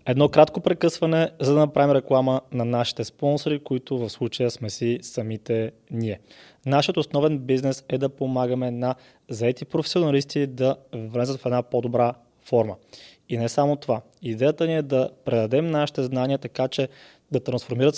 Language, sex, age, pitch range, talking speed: Bulgarian, male, 20-39, 120-145 Hz, 155 wpm